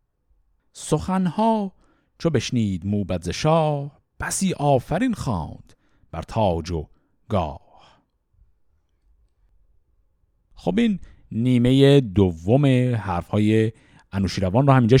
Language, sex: Persian, male